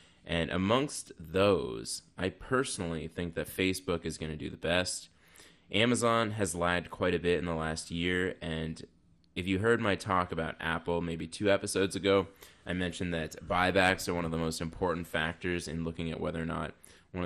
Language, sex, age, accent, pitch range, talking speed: English, male, 10-29, American, 80-95 Hz, 190 wpm